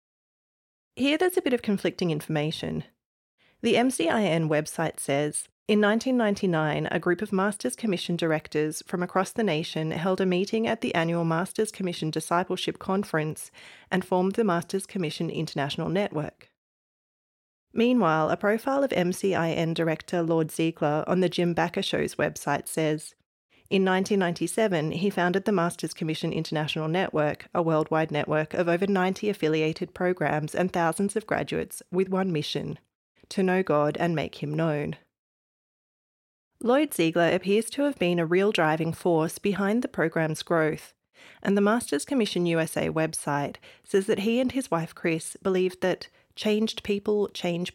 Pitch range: 160-200 Hz